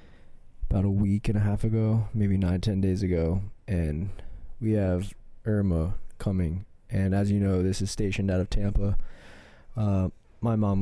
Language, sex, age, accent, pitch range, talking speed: English, male, 20-39, American, 90-100 Hz, 165 wpm